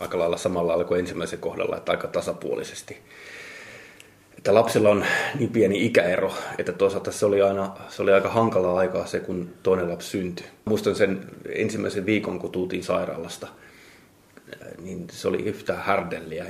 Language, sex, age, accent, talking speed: Finnish, male, 20-39, native, 150 wpm